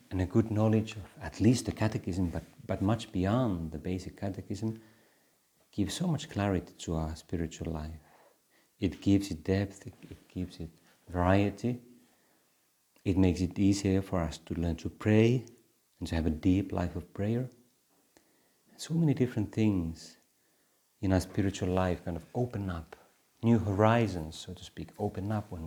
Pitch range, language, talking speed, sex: 85-105 Hz, Finnish, 165 wpm, male